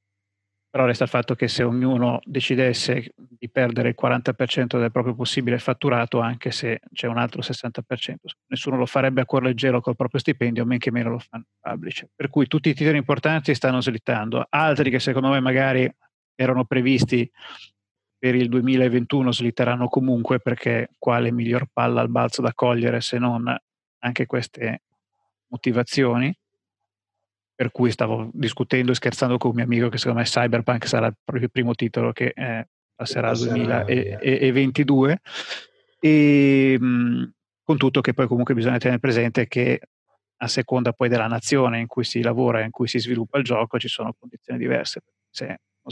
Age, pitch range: 30-49, 120-130 Hz